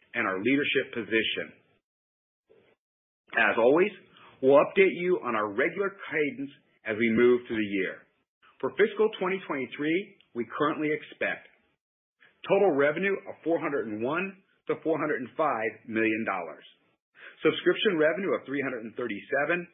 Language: English